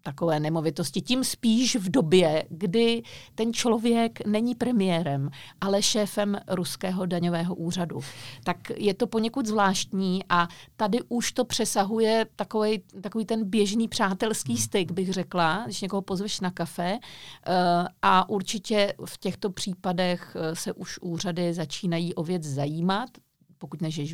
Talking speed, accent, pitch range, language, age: 130 wpm, native, 170-215 Hz, Czech, 50-69